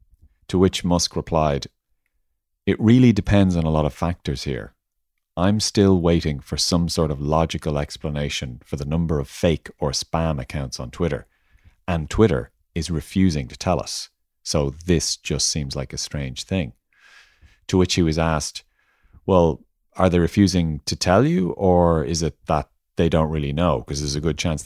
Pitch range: 75-90 Hz